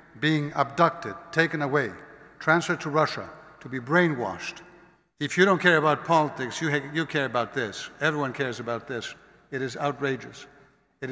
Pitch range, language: 140-170 Hz, English